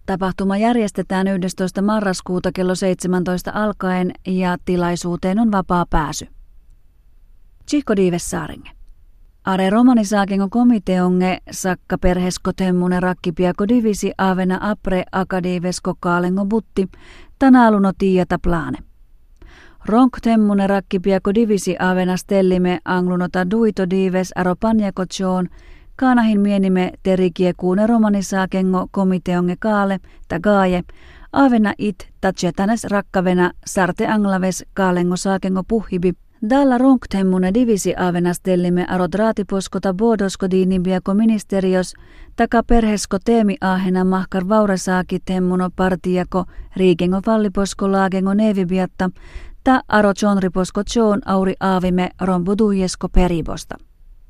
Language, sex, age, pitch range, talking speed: Finnish, female, 30-49, 180-205 Hz, 90 wpm